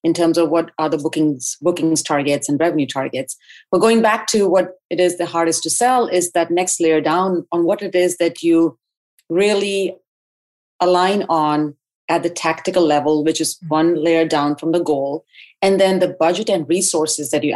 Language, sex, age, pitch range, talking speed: English, female, 30-49, 160-190 Hz, 195 wpm